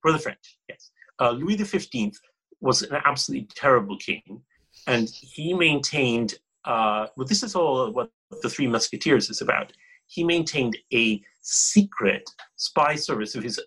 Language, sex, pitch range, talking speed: English, male, 115-170 Hz, 150 wpm